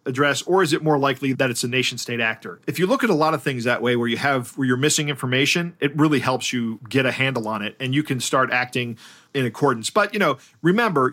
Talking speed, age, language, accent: 260 wpm, 40-59, English, American